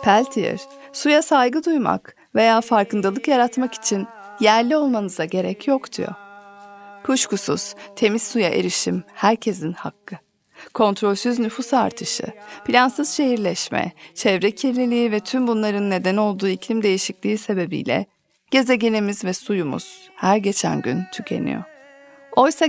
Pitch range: 205-255 Hz